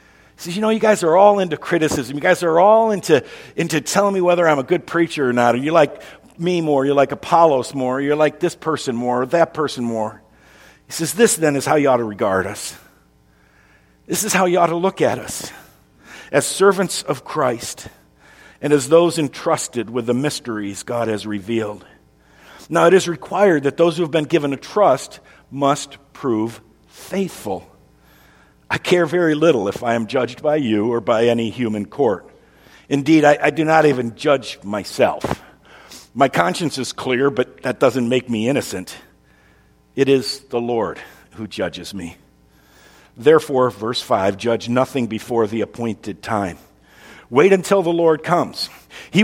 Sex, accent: male, American